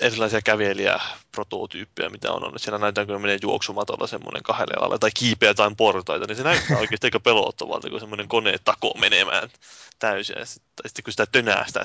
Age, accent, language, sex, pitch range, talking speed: 20-39, native, Finnish, male, 105-115 Hz, 155 wpm